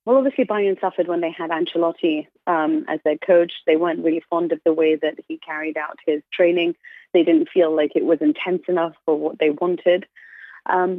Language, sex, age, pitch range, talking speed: English, female, 30-49, 155-185 Hz, 210 wpm